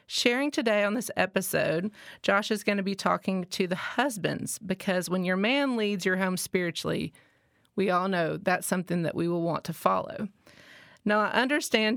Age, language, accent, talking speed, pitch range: 30-49, English, American, 180 wpm, 185-225 Hz